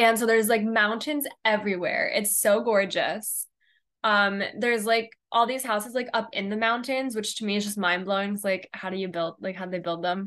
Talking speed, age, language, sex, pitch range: 220 wpm, 10-29, English, female, 205-235 Hz